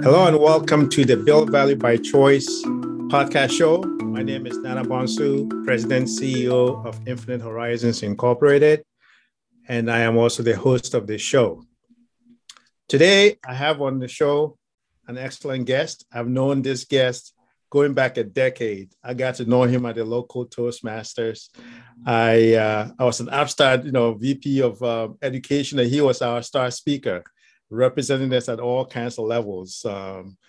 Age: 50-69